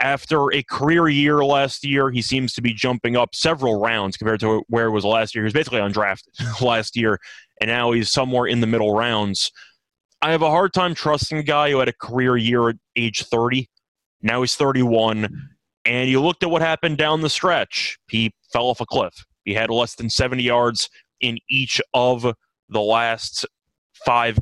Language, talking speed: English, 195 wpm